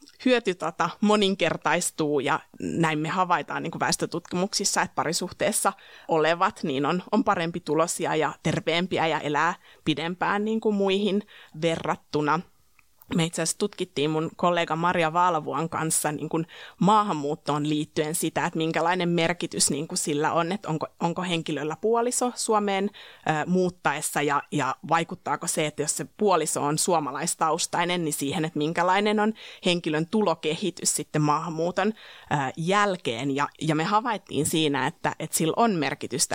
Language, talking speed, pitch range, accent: Finnish, 140 wpm, 155-185 Hz, native